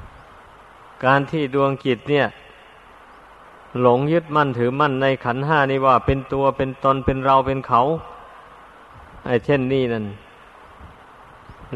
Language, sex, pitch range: Thai, male, 125-140 Hz